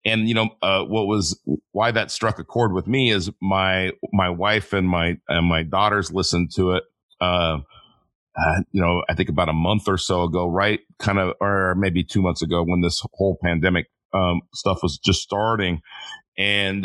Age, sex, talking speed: 40-59, male, 195 wpm